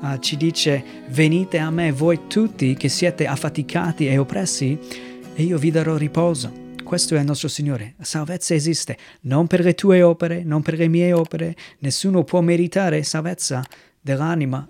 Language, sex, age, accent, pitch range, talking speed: Italian, male, 30-49, native, 135-165 Hz, 165 wpm